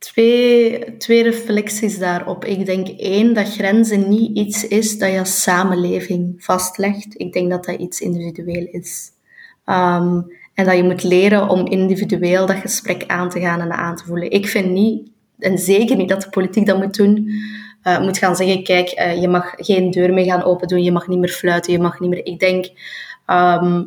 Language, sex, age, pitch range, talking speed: Dutch, female, 20-39, 180-200 Hz, 190 wpm